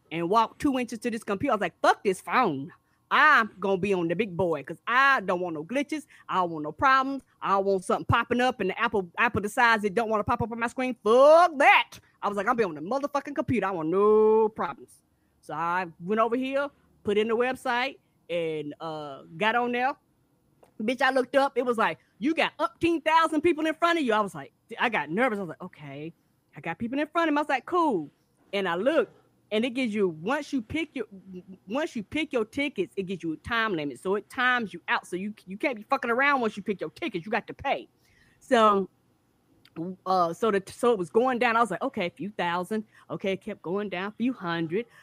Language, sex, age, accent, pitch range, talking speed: English, female, 20-39, American, 180-250 Hz, 250 wpm